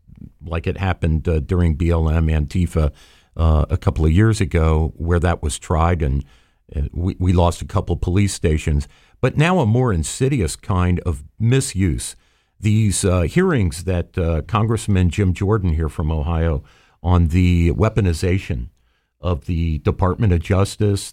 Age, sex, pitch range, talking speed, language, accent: 50-69, male, 85-115 Hz, 155 wpm, English, American